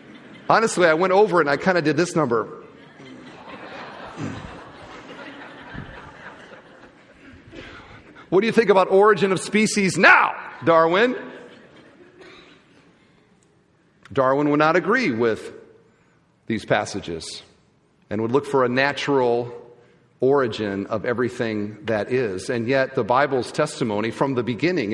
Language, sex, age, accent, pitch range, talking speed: English, male, 40-59, American, 135-200 Hz, 115 wpm